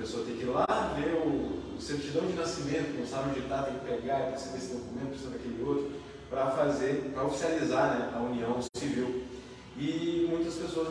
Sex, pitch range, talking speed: male, 115-150 Hz, 180 wpm